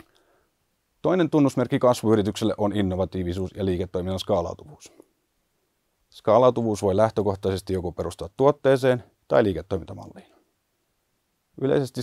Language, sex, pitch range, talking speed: Finnish, male, 90-110 Hz, 85 wpm